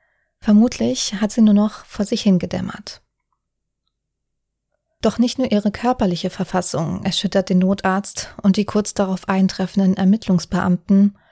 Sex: female